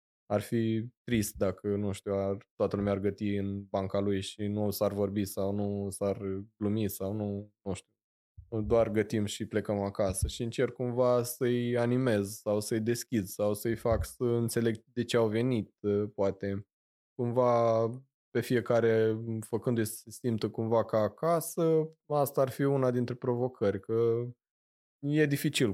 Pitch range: 100-120 Hz